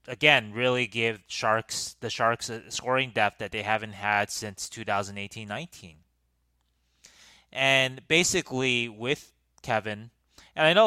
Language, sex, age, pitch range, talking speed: English, male, 20-39, 100-125 Hz, 115 wpm